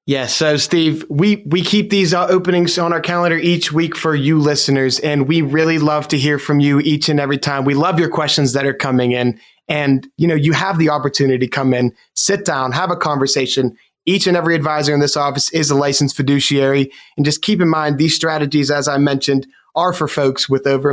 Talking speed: 225 wpm